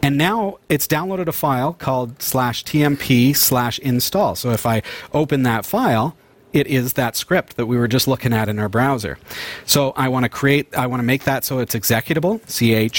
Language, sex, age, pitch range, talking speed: English, male, 40-59, 115-140 Hz, 205 wpm